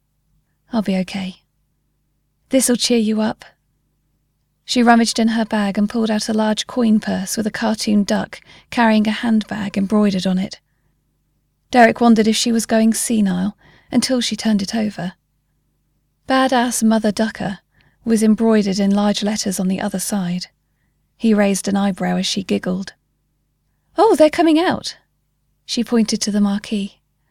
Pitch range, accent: 185-230 Hz, British